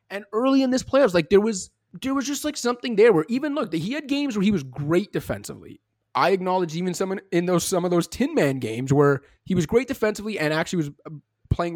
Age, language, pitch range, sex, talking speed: 20-39, English, 135-190 Hz, male, 235 wpm